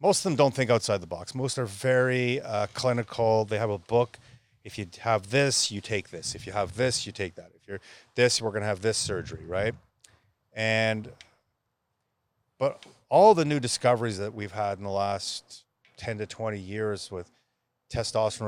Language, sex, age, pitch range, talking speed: English, male, 30-49, 100-125 Hz, 190 wpm